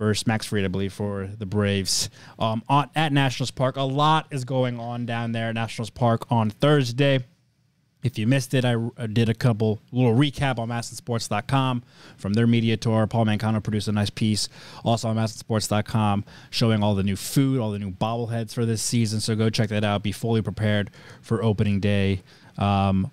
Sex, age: male, 20-39